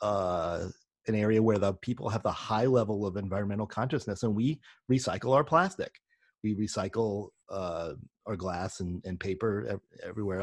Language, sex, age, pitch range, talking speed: English, male, 40-59, 110-135 Hz, 155 wpm